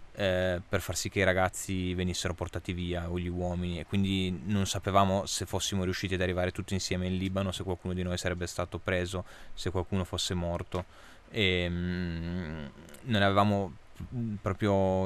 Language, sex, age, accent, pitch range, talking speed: Italian, male, 20-39, native, 85-95 Hz, 160 wpm